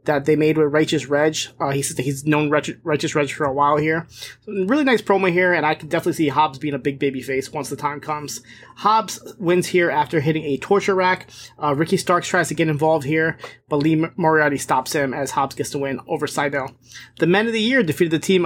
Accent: American